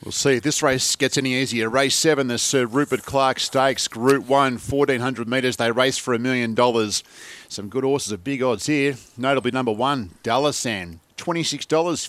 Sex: male